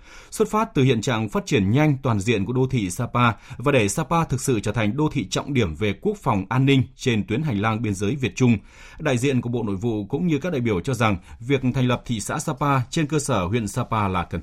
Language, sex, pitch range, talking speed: Vietnamese, male, 105-140 Hz, 265 wpm